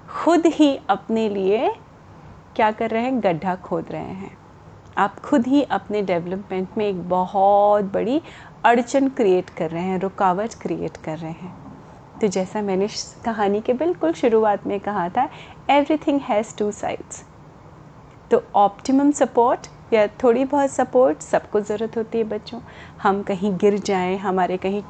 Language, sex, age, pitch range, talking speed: Hindi, female, 30-49, 195-280 Hz, 150 wpm